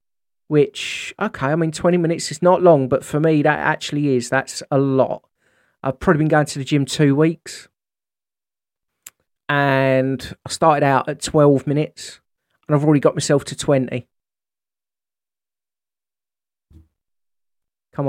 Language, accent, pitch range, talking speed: English, British, 130-165 Hz, 140 wpm